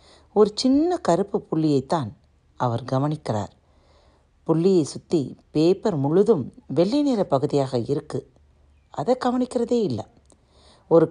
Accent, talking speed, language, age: native, 95 wpm, Tamil, 40-59